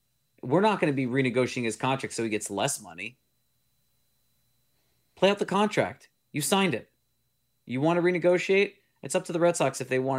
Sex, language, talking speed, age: male, English, 195 wpm, 30-49